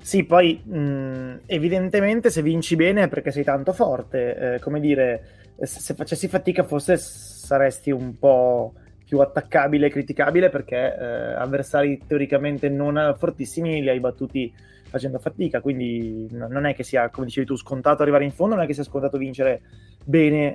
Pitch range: 130-160 Hz